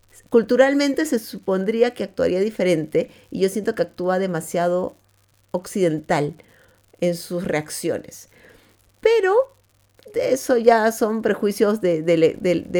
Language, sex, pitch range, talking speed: Spanish, female, 185-245 Hz, 120 wpm